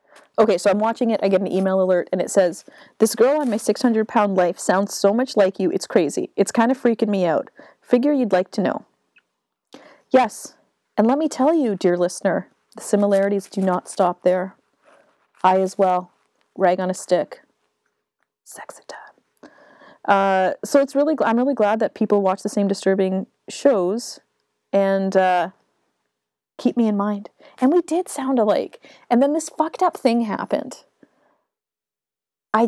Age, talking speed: 30-49, 170 wpm